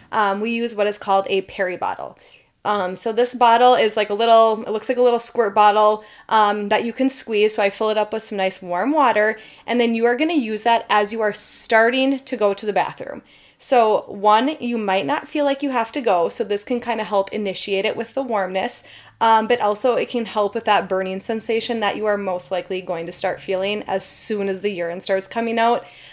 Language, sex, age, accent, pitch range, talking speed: English, female, 20-39, American, 195-240 Hz, 240 wpm